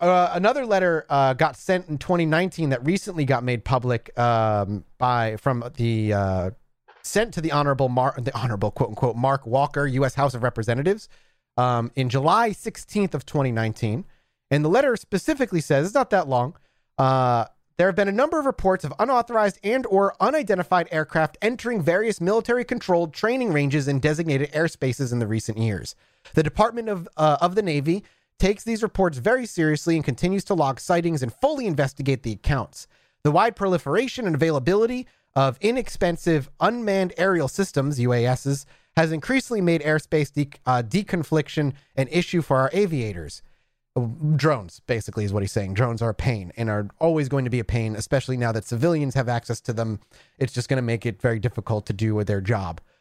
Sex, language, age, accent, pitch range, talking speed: male, English, 30-49, American, 125-185 Hz, 180 wpm